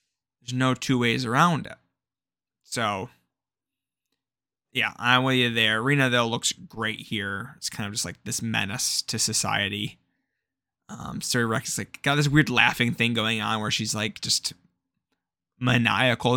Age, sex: 20-39, male